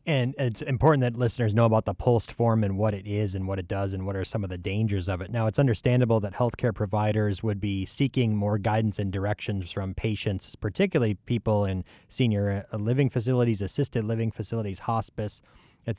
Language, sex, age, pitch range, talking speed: English, male, 20-39, 100-115 Hz, 200 wpm